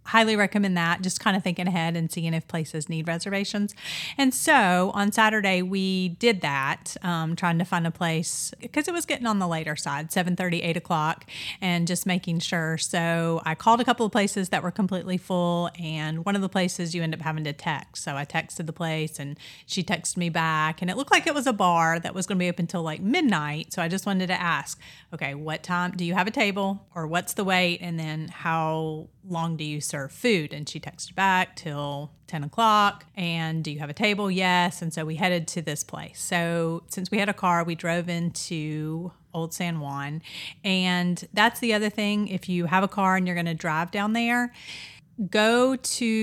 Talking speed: 220 wpm